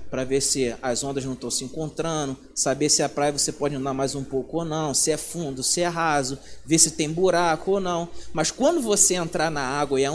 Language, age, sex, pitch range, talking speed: Portuguese, 20-39, male, 155-245 Hz, 240 wpm